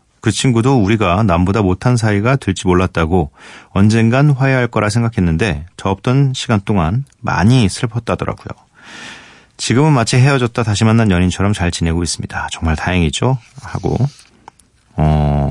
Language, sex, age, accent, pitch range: Korean, male, 40-59, native, 90-130 Hz